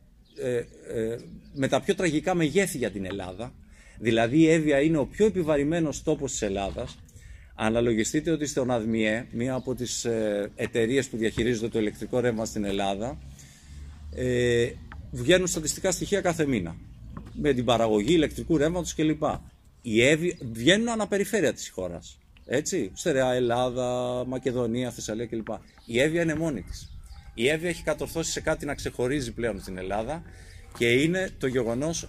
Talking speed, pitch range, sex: 140 wpm, 110-155 Hz, male